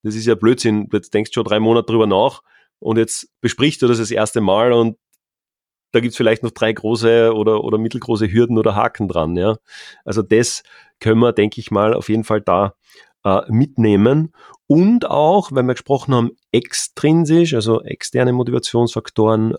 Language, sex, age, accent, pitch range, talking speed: German, male, 30-49, German, 105-125 Hz, 180 wpm